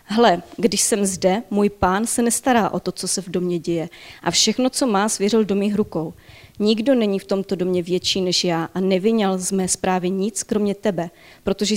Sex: female